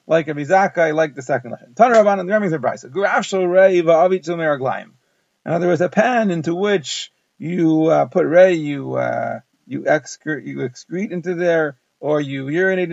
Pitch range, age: 155-190 Hz, 40-59